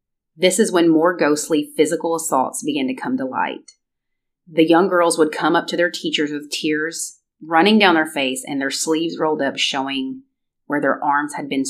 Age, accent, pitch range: 30-49, American, 145-215 Hz